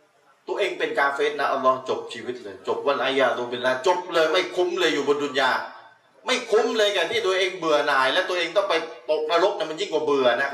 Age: 30-49